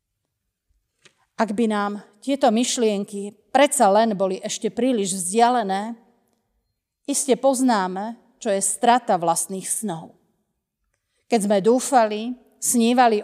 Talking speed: 100 wpm